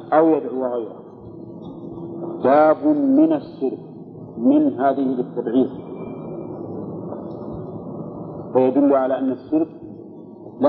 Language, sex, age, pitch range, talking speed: Arabic, male, 50-69, 130-160 Hz, 80 wpm